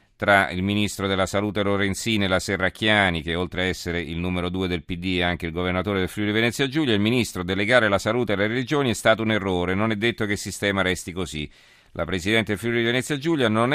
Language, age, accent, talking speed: Italian, 40-59, native, 225 wpm